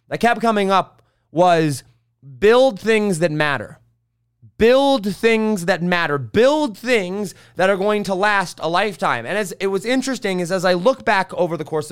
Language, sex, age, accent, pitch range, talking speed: English, male, 20-39, American, 155-215 Hz, 175 wpm